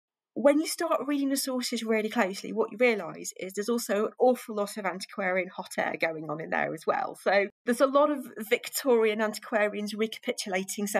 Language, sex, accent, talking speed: English, female, British, 190 wpm